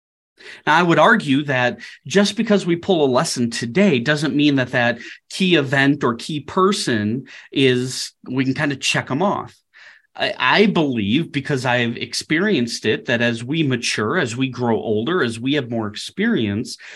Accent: American